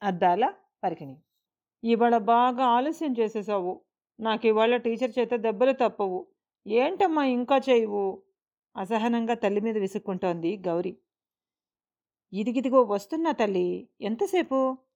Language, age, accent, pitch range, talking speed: Telugu, 40-59, native, 185-230 Hz, 95 wpm